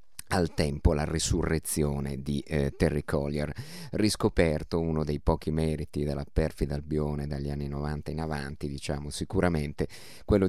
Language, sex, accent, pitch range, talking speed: Italian, male, native, 75-85 Hz, 135 wpm